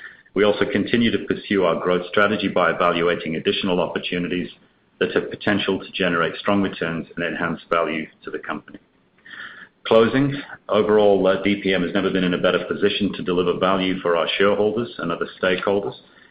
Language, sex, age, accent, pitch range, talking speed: English, male, 40-59, British, 90-105 Hz, 160 wpm